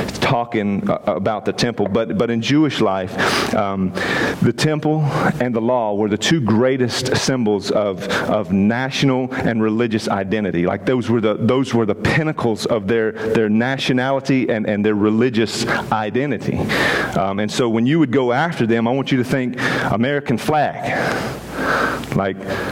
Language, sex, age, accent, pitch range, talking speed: English, male, 40-59, American, 115-145 Hz, 160 wpm